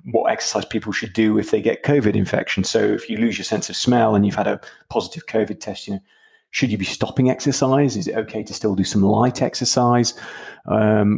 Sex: male